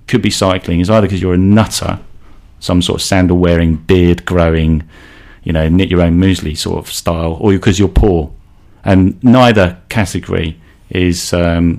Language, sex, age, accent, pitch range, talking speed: English, male, 40-59, British, 90-105 Hz, 175 wpm